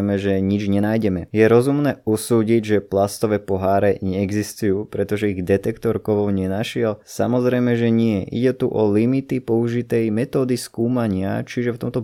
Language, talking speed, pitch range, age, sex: Slovak, 140 wpm, 100-120 Hz, 20-39, male